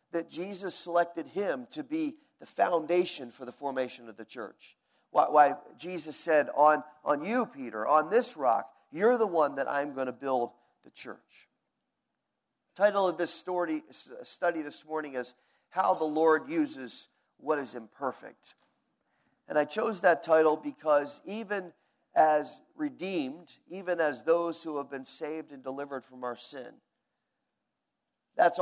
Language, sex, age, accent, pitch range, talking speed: English, male, 40-59, American, 145-185 Hz, 150 wpm